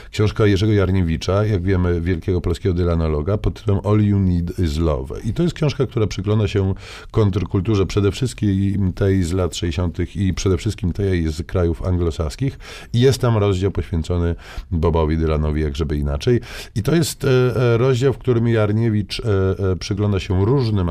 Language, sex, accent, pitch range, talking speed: Polish, male, native, 85-105 Hz, 160 wpm